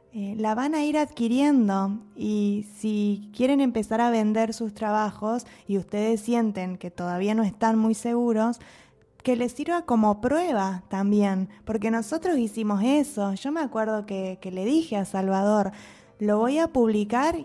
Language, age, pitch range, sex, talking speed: Spanish, 20-39, 200-245 Hz, female, 155 wpm